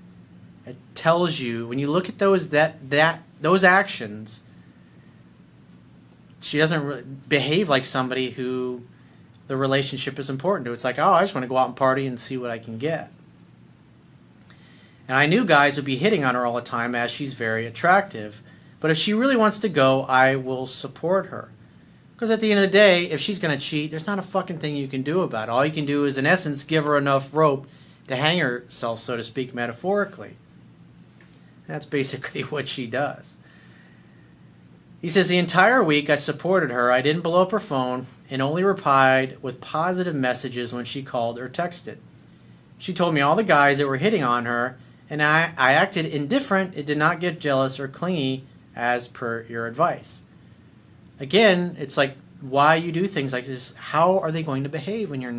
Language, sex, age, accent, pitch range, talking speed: English, male, 40-59, American, 125-165 Hz, 195 wpm